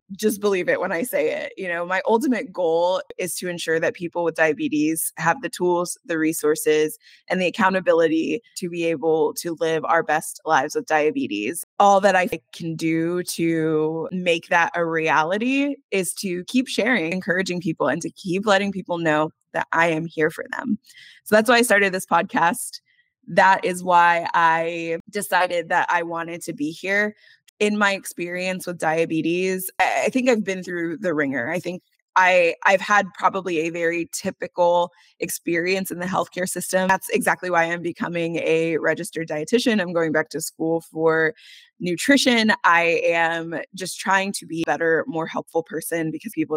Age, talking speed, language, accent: 20-39, 175 wpm, English, American